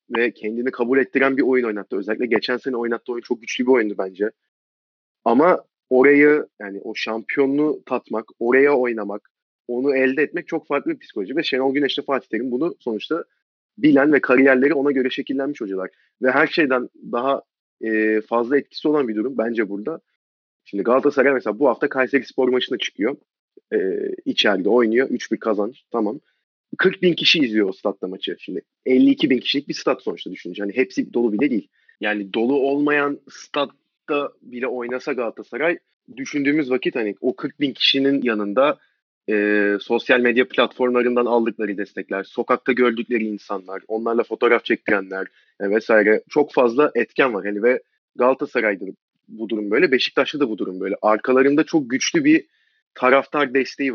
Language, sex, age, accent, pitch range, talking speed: Turkish, male, 30-49, native, 115-145 Hz, 160 wpm